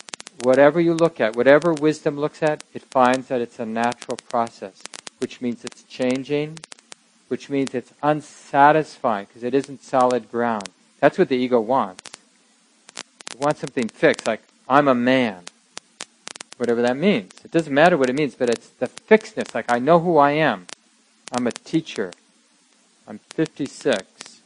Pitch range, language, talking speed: 120-155 Hz, English, 160 wpm